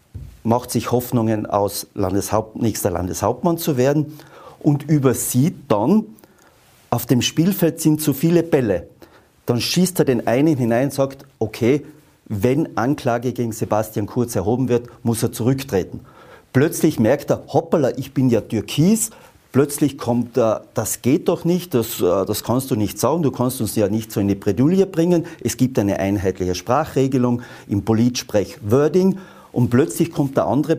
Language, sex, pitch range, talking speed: German, male, 115-150 Hz, 160 wpm